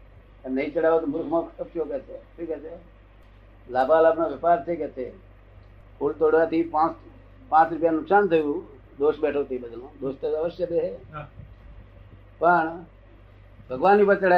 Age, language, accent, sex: 60-79, Gujarati, native, male